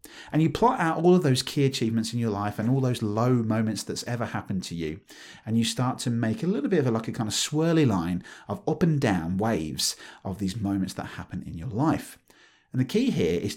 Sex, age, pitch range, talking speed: male, 30-49, 105-135 Hz, 250 wpm